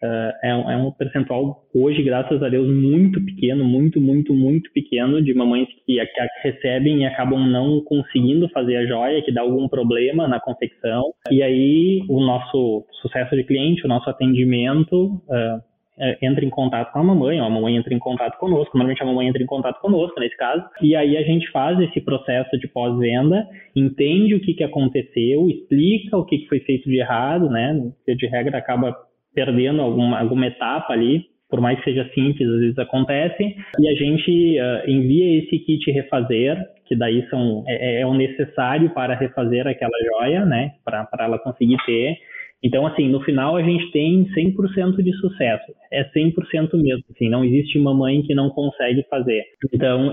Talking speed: 180 wpm